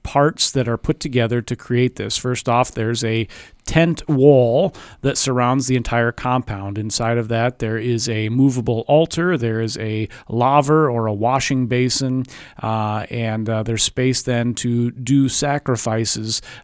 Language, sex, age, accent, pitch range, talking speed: English, male, 40-59, American, 115-140 Hz, 160 wpm